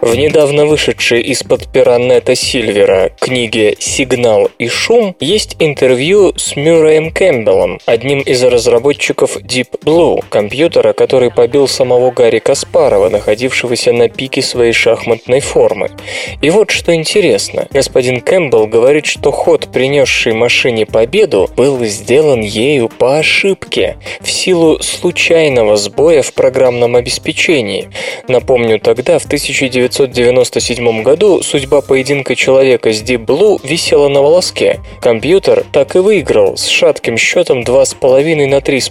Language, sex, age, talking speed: Russian, male, 20-39, 125 wpm